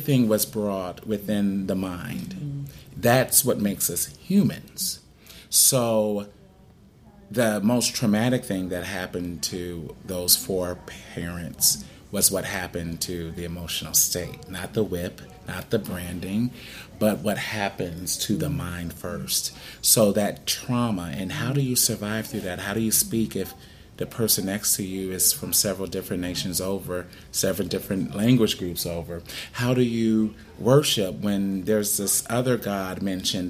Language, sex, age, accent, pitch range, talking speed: English, male, 30-49, American, 95-110 Hz, 145 wpm